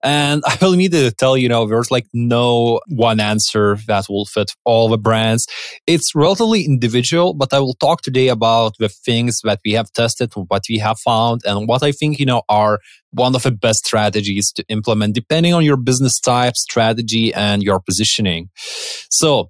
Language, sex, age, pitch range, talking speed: English, male, 20-39, 110-145 Hz, 195 wpm